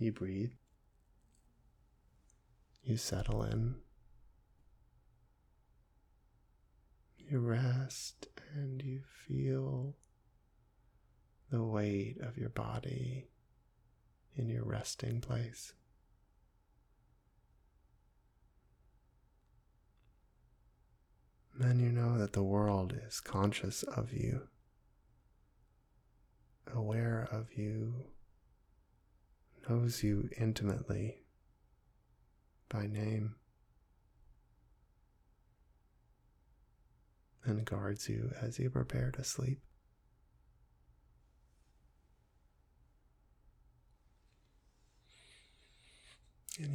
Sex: male